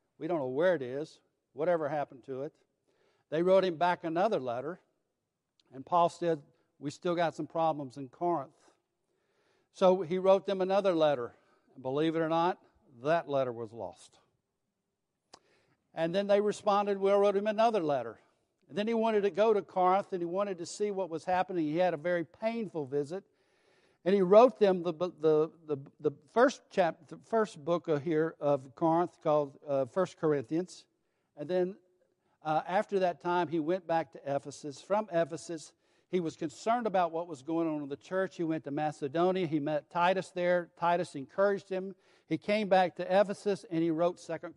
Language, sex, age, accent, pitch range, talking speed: English, male, 60-79, American, 150-190 Hz, 180 wpm